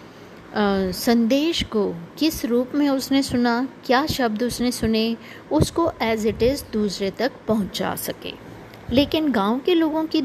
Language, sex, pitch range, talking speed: Hindi, female, 210-270 Hz, 140 wpm